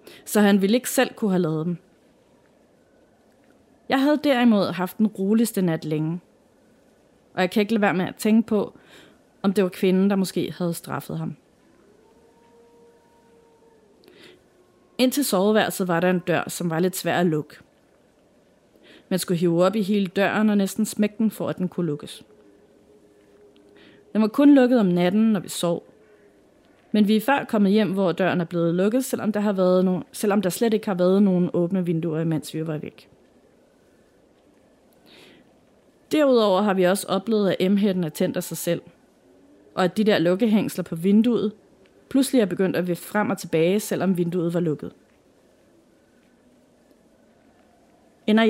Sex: female